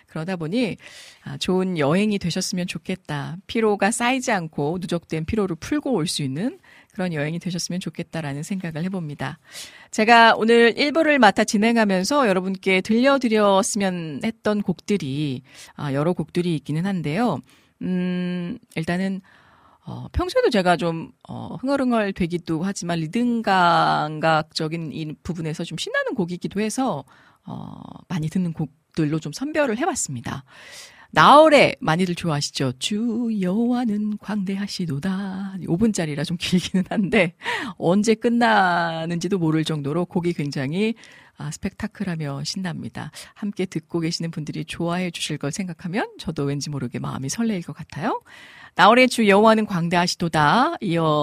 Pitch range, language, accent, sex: 160-220 Hz, Korean, native, female